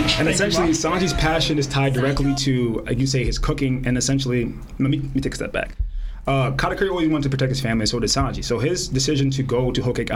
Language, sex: English, male